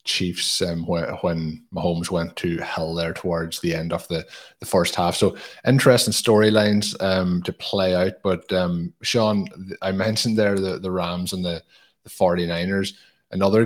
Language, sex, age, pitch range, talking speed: English, male, 20-39, 90-110 Hz, 165 wpm